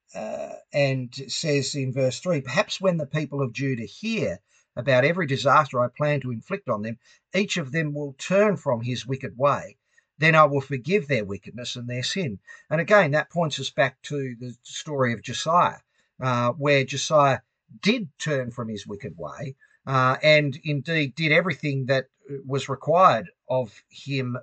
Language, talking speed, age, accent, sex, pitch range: English, 170 wpm, 50-69, Australian, male, 125-155 Hz